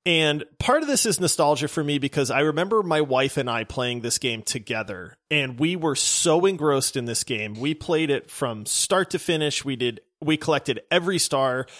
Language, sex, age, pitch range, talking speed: English, male, 30-49, 135-170 Hz, 205 wpm